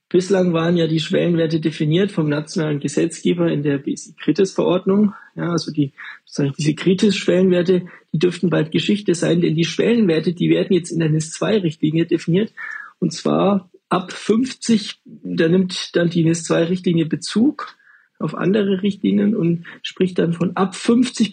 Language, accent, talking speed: German, German, 150 wpm